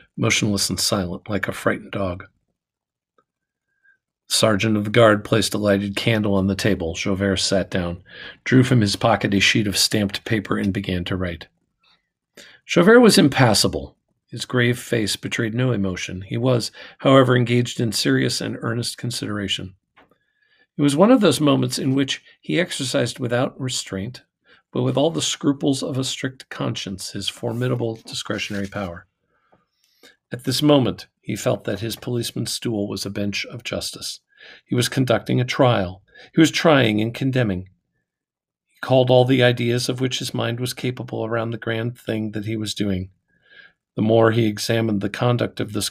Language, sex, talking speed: English, male, 170 wpm